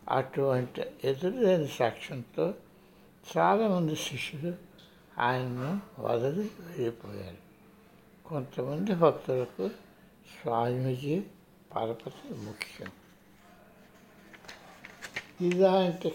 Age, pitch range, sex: 60-79, 130-190 Hz, male